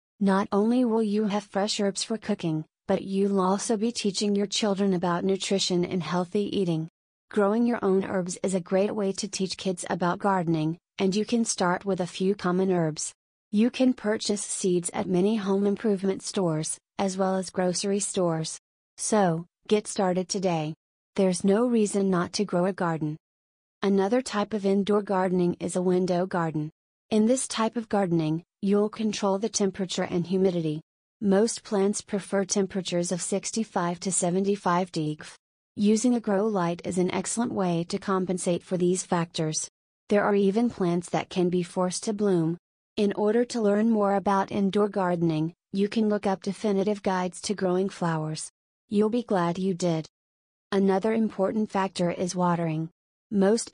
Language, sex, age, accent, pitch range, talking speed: English, female, 30-49, American, 180-205 Hz, 165 wpm